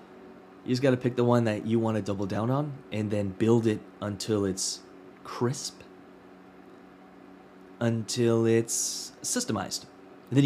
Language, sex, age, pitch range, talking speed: English, male, 20-39, 95-125 Hz, 140 wpm